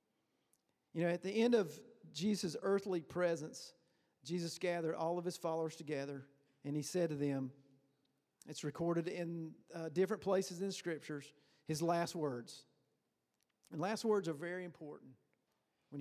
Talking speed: 150 wpm